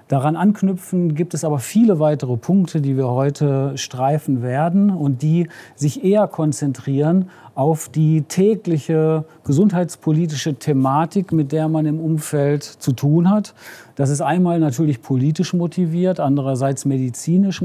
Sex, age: male, 40-59